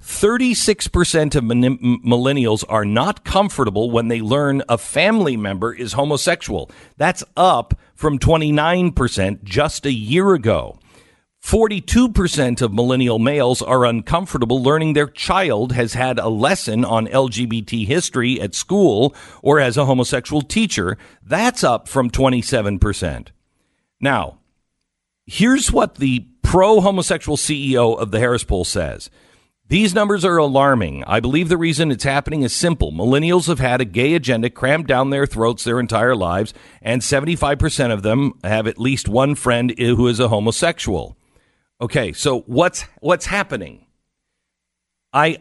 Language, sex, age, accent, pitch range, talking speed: English, male, 50-69, American, 115-160 Hz, 135 wpm